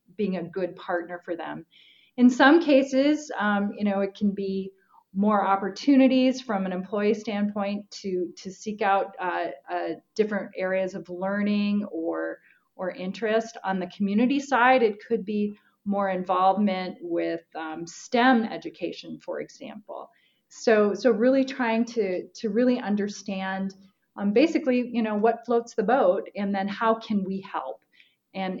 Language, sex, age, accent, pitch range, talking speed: English, female, 30-49, American, 180-225 Hz, 150 wpm